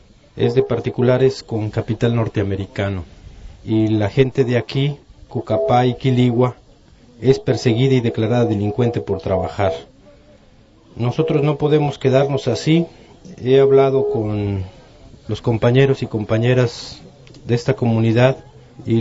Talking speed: 115 wpm